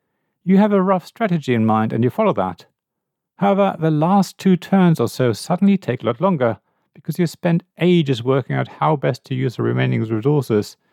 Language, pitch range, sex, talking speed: English, 115-175 Hz, male, 200 wpm